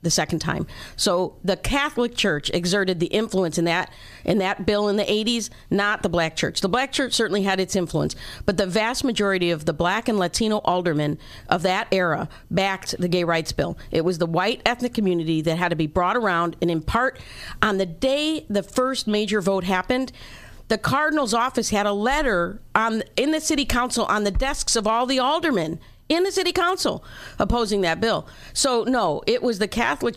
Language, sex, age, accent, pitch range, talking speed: English, female, 50-69, American, 180-230 Hz, 200 wpm